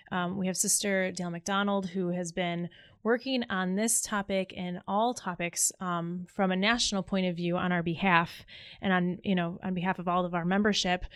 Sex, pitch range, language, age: female, 180-210 Hz, English, 20-39